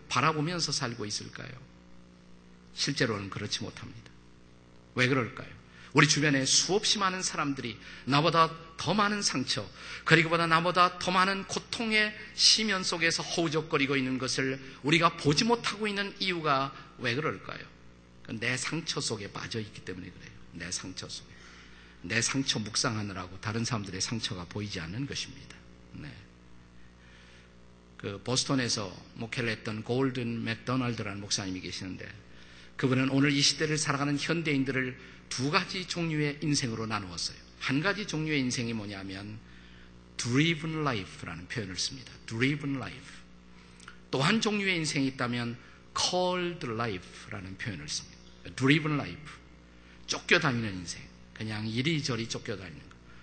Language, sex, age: Korean, male, 50-69